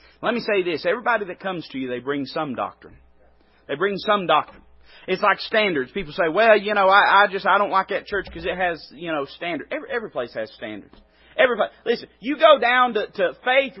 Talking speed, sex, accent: 220 wpm, male, American